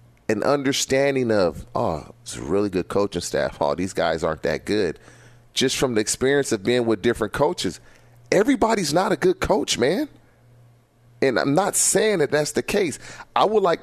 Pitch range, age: 110-130 Hz, 30-49